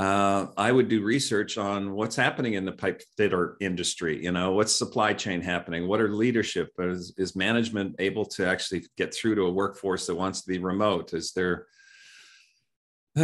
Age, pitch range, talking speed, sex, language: 40-59, 95-125 Hz, 185 wpm, male, English